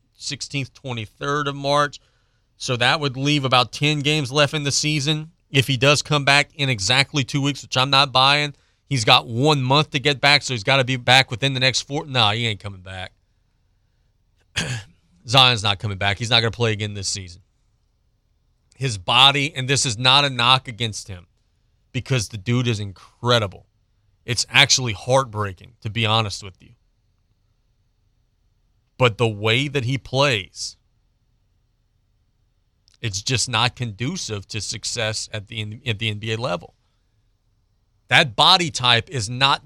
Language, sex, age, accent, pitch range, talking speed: English, male, 30-49, American, 105-140 Hz, 165 wpm